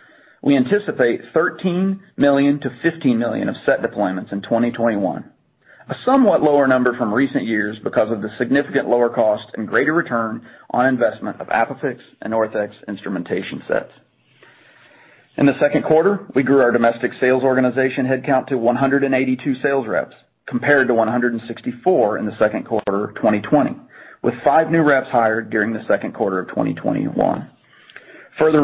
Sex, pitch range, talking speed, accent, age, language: male, 120-150 Hz, 150 wpm, American, 40-59, English